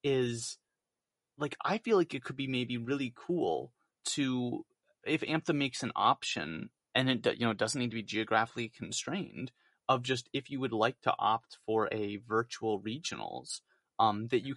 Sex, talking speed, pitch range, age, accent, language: male, 175 wpm, 110-140 Hz, 30-49, American, English